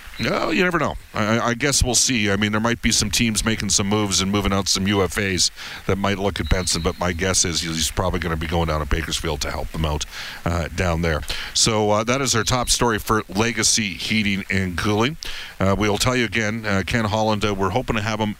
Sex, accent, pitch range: male, American, 85-110 Hz